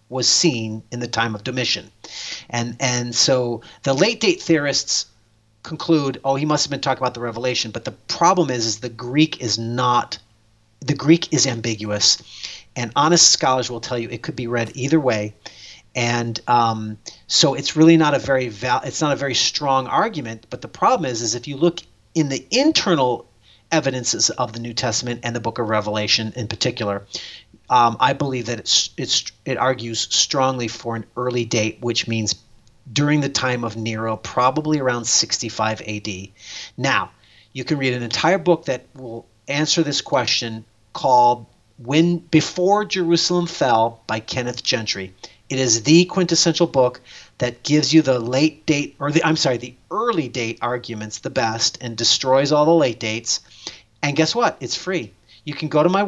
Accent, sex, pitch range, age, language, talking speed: American, male, 115-150 Hz, 40-59, English, 180 wpm